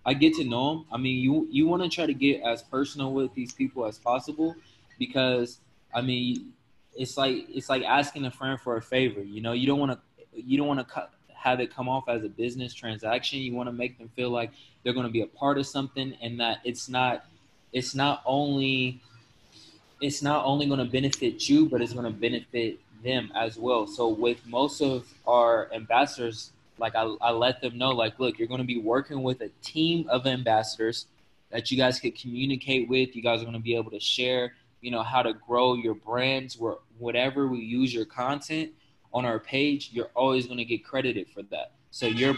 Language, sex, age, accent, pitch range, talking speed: English, male, 20-39, American, 120-135 Hz, 220 wpm